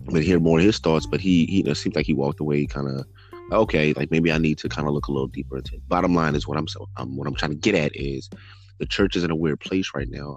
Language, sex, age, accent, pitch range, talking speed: English, male, 20-39, American, 75-95 Hz, 315 wpm